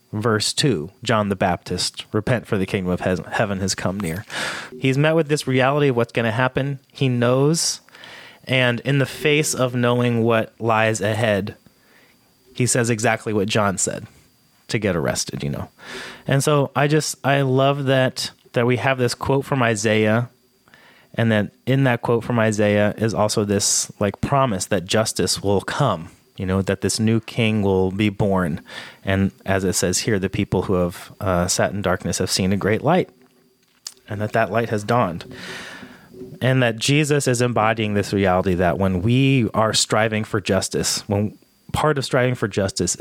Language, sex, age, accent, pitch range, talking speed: English, male, 30-49, American, 100-130 Hz, 180 wpm